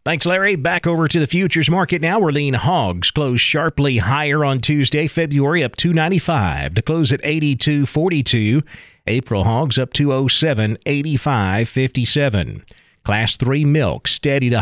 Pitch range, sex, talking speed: 120-155 Hz, male, 140 wpm